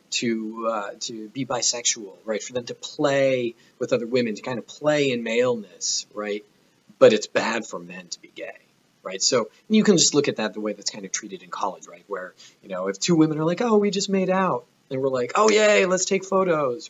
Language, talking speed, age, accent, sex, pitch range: English, 235 wpm, 30-49, American, male, 115-190 Hz